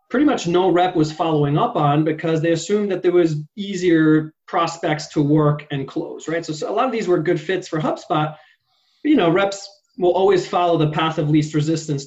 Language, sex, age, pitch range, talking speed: English, male, 20-39, 150-185 Hz, 215 wpm